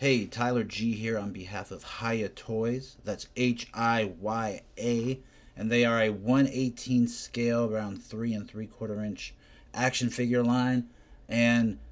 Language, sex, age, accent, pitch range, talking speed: English, male, 30-49, American, 105-120 Hz, 150 wpm